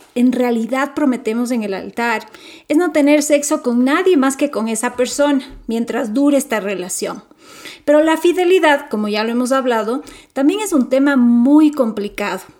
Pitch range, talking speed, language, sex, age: 230-300 Hz, 165 wpm, Spanish, female, 40-59